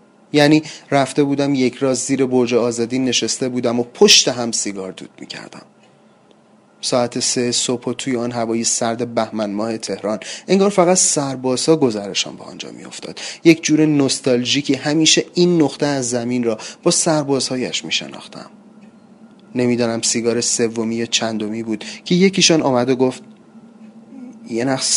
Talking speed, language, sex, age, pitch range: 140 wpm, Persian, male, 30-49, 120-180 Hz